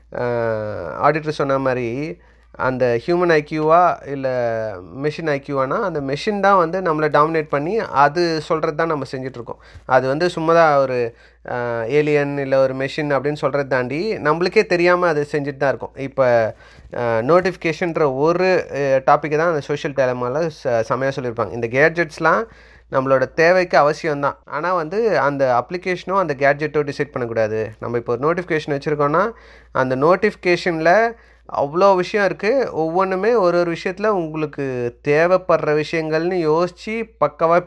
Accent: native